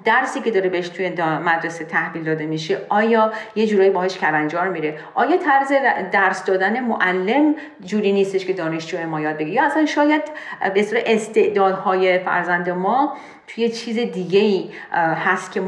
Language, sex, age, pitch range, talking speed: Persian, female, 40-59, 175-235 Hz, 160 wpm